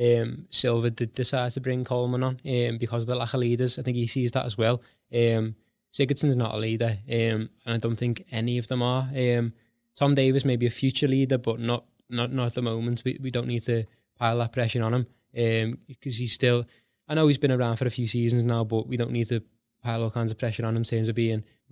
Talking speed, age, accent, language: 250 wpm, 20-39, British, English